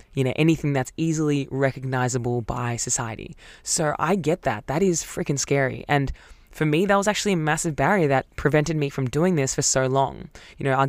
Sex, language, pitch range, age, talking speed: female, English, 130-155 Hz, 20-39, 205 wpm